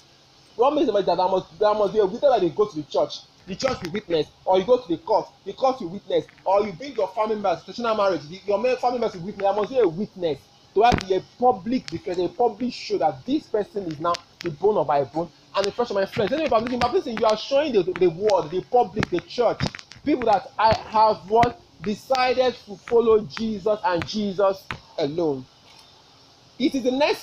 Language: English